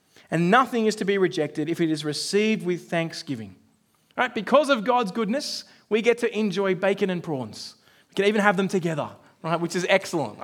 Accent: Australian